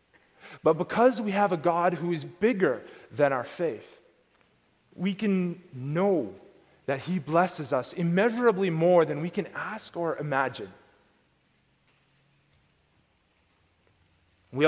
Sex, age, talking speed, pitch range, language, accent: male, 30-49, 115 wpm, 150-195 Hz, English, American